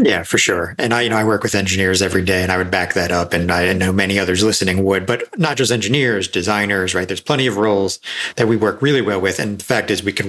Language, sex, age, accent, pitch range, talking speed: English, male, 40-59, American, 100-120 Hz, 280 wpm